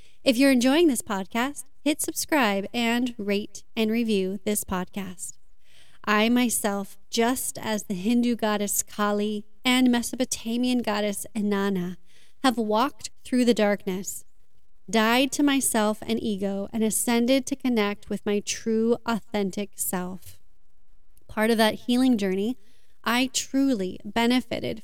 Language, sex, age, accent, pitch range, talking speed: English, female, 30-49, American, 205-250 Hz, 125 wpm